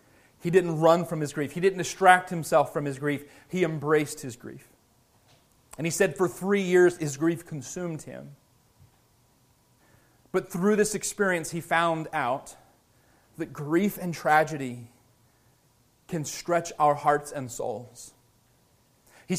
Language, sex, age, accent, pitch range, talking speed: English, male, 30-49, American, 125-180 Hz, 140 wpm